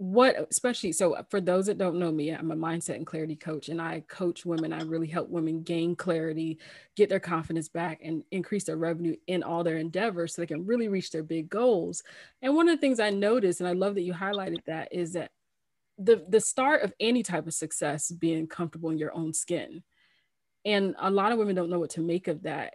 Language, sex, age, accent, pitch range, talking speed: English, female, 20-39, American, 165-200 Hz, 230 wpm